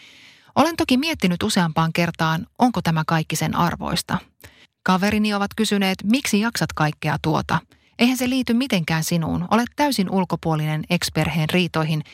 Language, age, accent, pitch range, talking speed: Finnish, 30-49, native, 160-220 Hz, 135 wpm